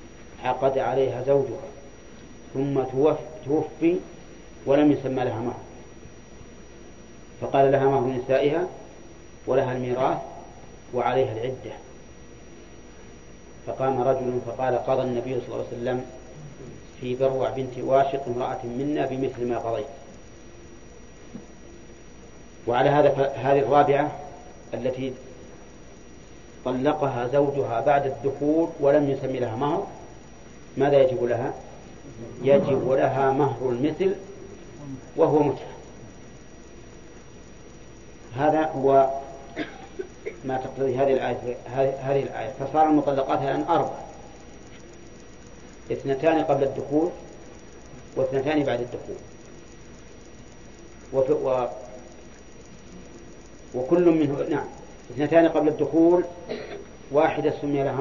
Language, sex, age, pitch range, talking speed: English, male, 40-59, 125-145 Hz, 90 wpm